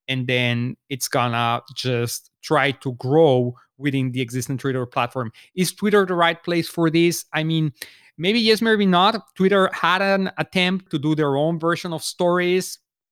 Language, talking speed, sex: English, 170 wpm, male